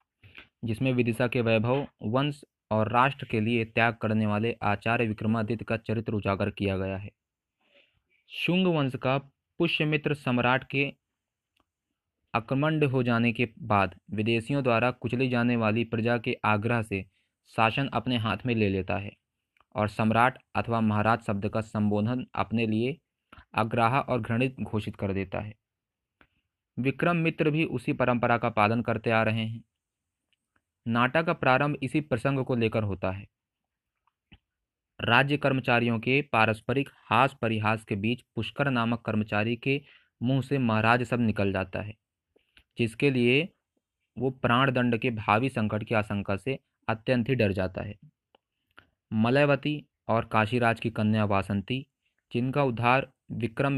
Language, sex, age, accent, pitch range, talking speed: Hindi, male, 20-39, native, 105-130 Hz, 140 wpm